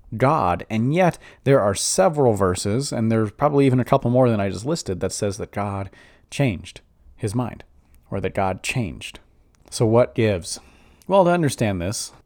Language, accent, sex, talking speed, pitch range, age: English, American, male, 175 wpm, 100-125 Hz, 30-49